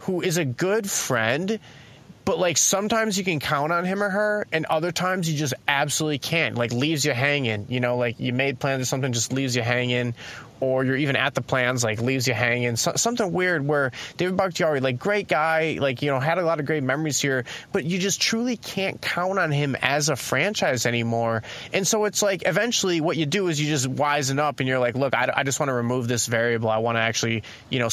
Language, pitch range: English, 120-165 Hz